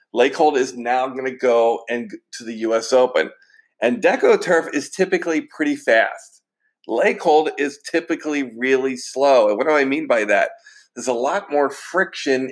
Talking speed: 165 wpm